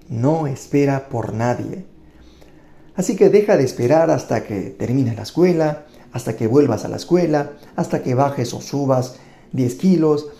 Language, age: Spanish, 50-69